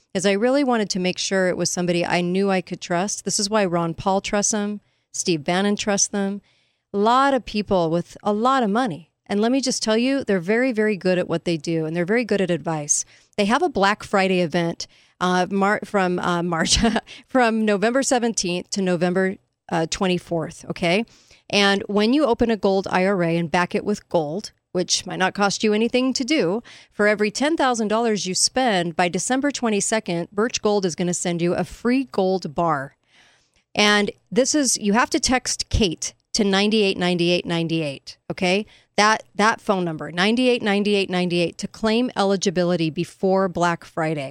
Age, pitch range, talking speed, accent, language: 40-59, 175-215 Hz, 185 wpm, American, English